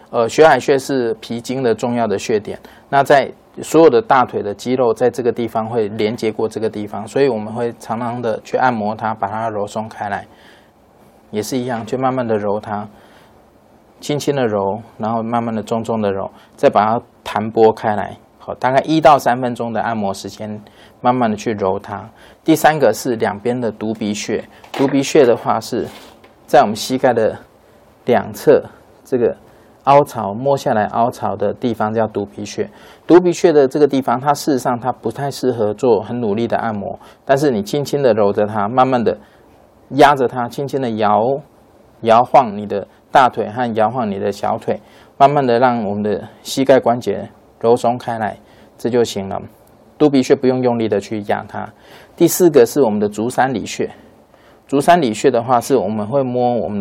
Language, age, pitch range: Chinese, 20-39, 105-130 Hz